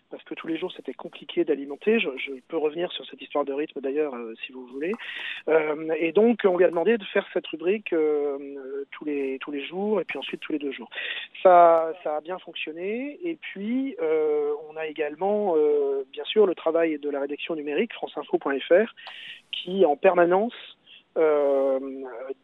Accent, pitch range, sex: French, 150-200 Hz, male